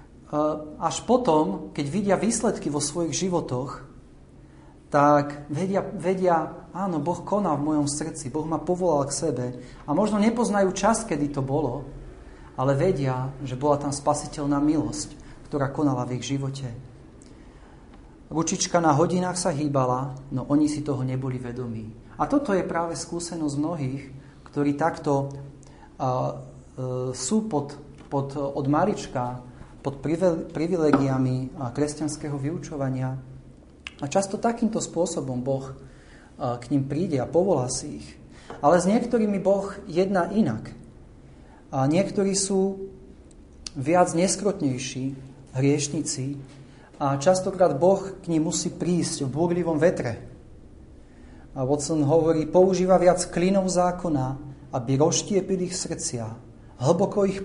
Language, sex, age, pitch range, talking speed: Slovak, male, 40-59, 135-175 Hz, 120 wpm